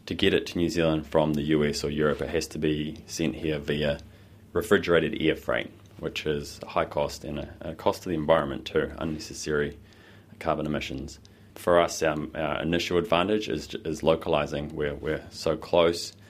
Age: 20-39